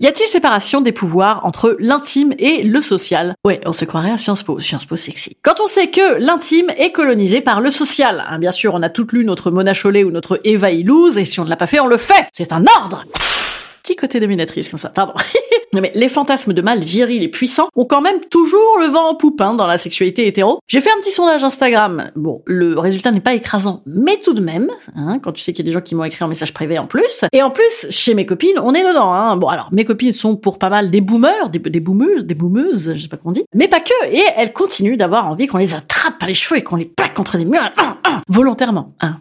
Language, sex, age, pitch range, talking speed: French, female, 30-49, 180-285 Hz, 265 wpm